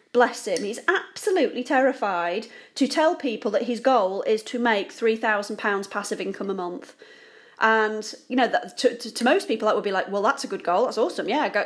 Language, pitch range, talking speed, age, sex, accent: English, 210-275 Hz, 215 wpm, 30-49, female, British